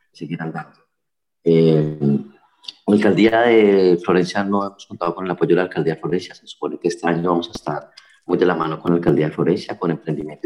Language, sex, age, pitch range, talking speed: Spanish, male, 30-49, 85-95 Hz, 220 wpm